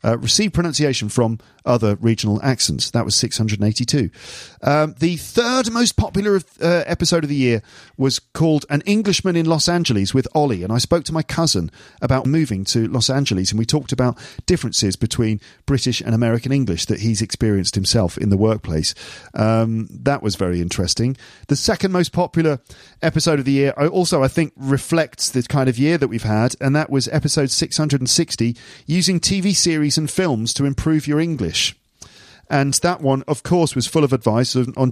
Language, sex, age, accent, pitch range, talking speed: English, male, 40-59, British, 115-160 Hz, 180 wpm